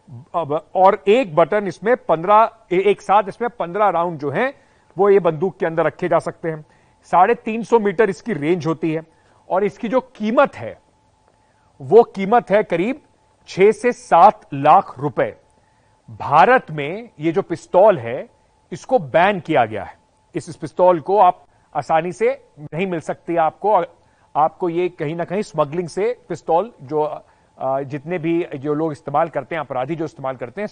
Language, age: Hindi, 40-59